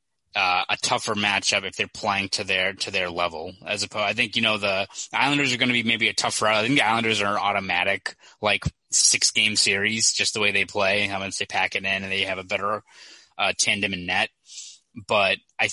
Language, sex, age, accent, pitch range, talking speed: English, male, 20-39, American, 95-110 Hz, 235 wpm